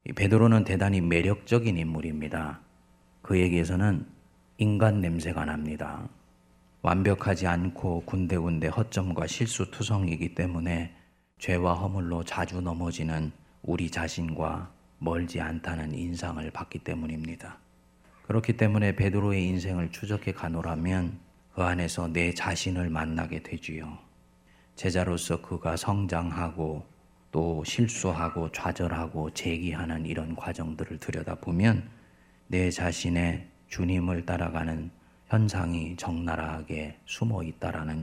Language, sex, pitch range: Korean, male, 80-100 Hz